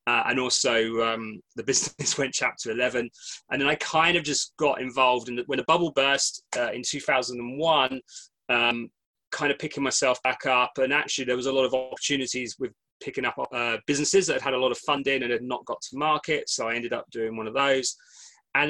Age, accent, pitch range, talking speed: 20-39, British, 115-145 Hz, 215 wpm